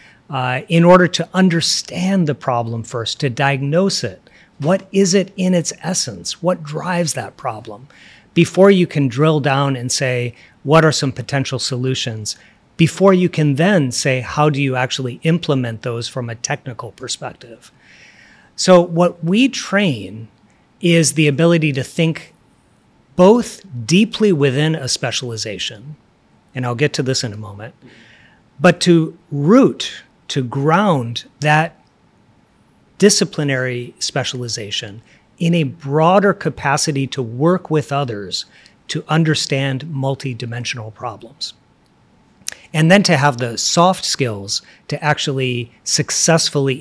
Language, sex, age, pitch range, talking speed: Vietnamese, male, 40-59, 125-165 Hz, 130 wpm